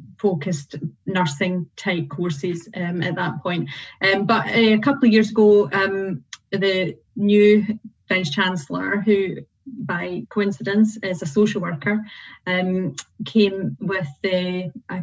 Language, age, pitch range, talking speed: English, 30-49, 180-200 Hz, 130 wpm